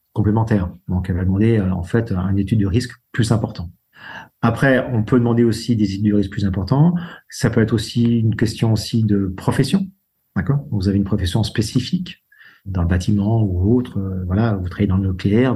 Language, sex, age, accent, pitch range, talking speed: French, male, 40-59, French, 105-135 Hz, 200 wpm